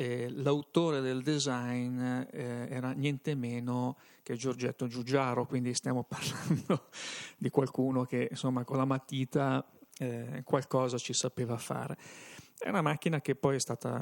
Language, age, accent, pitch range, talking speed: Italian, 40-59, native, 125-145 Hz, 135 wpm